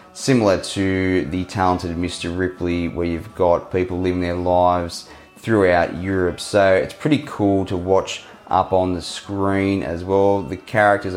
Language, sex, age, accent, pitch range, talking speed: English, male, 20-39, Australian, 90-105 Hz, 155 wpm